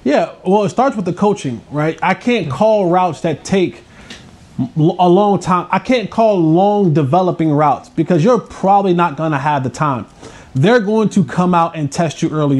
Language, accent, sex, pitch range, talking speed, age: English, American, male, 170-205 Hz, 195 wpm, 20-39